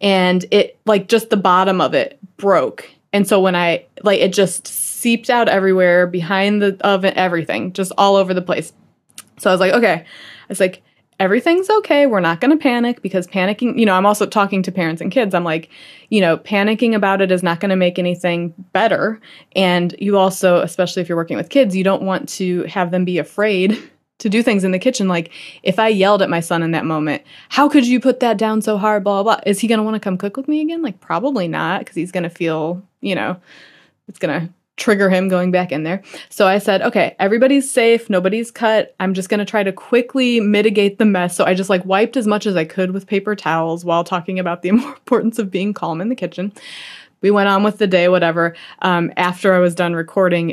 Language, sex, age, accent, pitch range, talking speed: English, female, 20-39, American, 180-220 Hz, 235 wpm